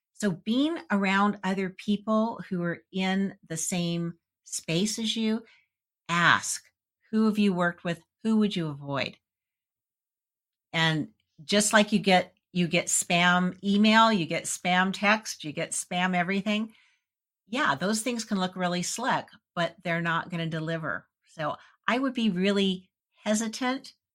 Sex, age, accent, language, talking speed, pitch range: female, 50-69, American, English, 145 wpm, 165-215 Hz